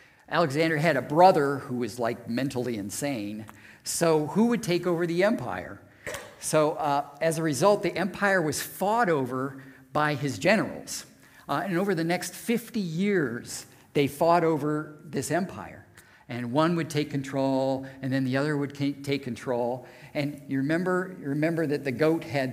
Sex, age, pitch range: male, 50-69, 120-155 Hz